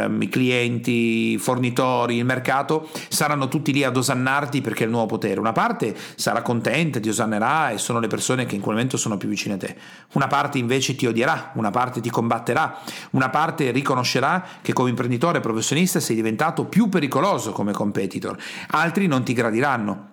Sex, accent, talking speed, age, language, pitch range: male, native, 180 wpm, 40-59, Italian, 120-160 Hz